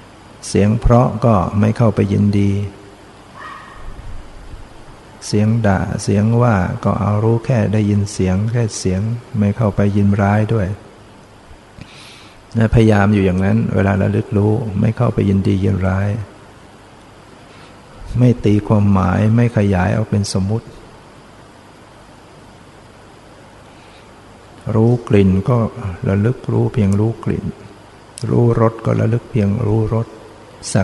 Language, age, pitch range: Thai, 60-79, 100-115 Hz